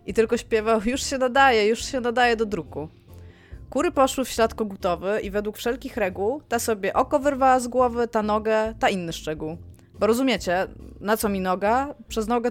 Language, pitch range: Polish, 175-235 Hz